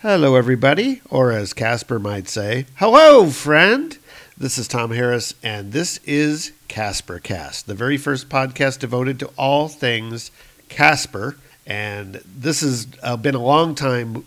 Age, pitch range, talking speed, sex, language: 50-69, 115-145 Hz, 140 wpm, male, English